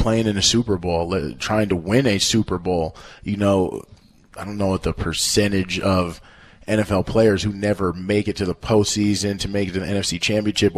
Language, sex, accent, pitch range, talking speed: English, male, American, 95-110 Hz, 200 wpm